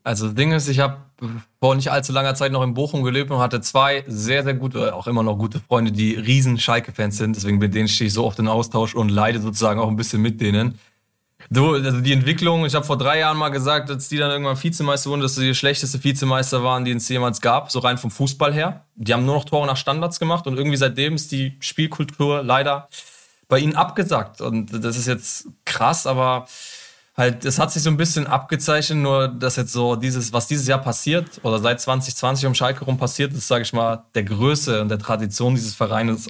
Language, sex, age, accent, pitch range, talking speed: German, male, 20-39, German, 115-140 Hz, 230 wpm